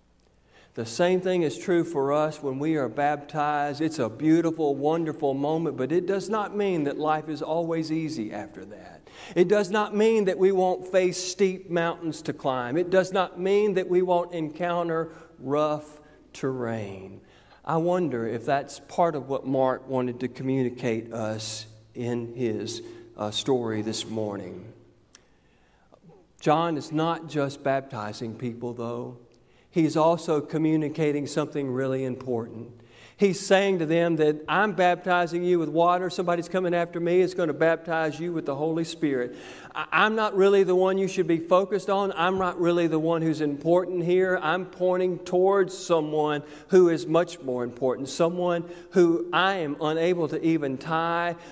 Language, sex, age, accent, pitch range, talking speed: English, male, 50-69, American, 135-175 Hz, 160 wpm